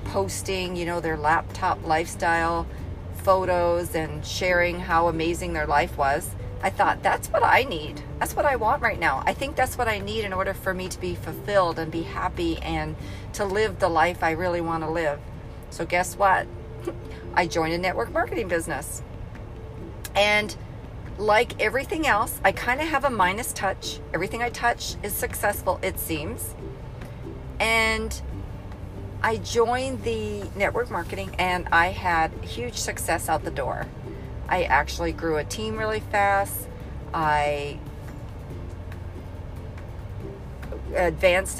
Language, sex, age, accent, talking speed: English, female, 40-59, American, 145 wpm